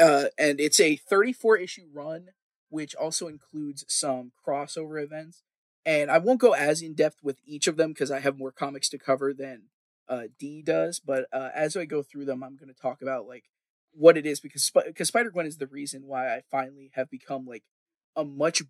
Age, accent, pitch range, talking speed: 20-39, American, 135-160 Hz, 215 wpm